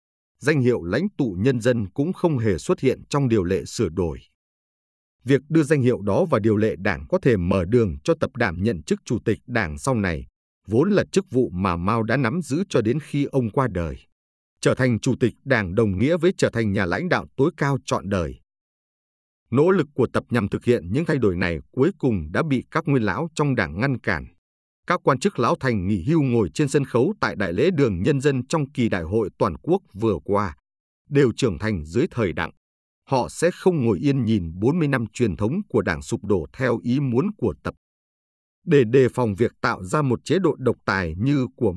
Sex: male